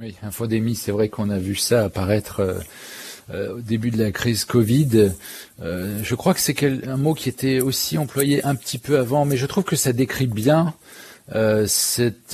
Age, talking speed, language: 40-59, 195 wpm, French